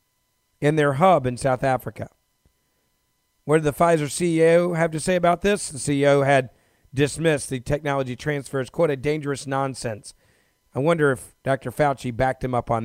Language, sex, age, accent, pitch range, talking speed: English, male, 40-59, American, 120-145 Hz, 175 wpm